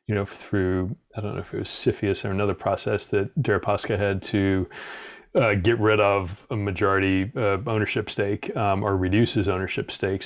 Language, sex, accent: English, male, American